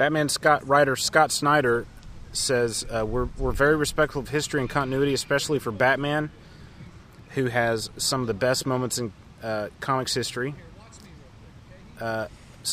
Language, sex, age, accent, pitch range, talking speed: English, male, 30-49, American, 110-135 Hz, 140 wpm